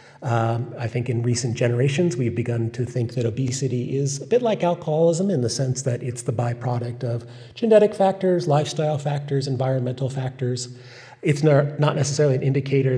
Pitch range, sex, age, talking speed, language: 120-145 Hz, male, 40-59, 165 wpm, English